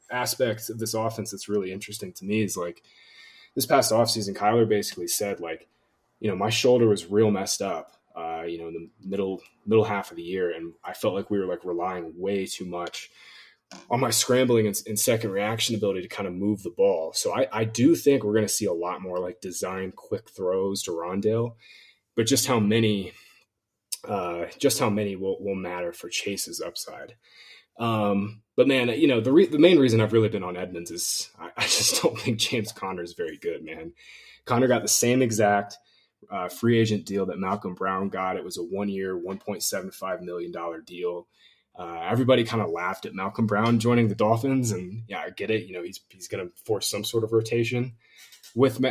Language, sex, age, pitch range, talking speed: English, male, 20-39, 95-115 Hz, 205 wpm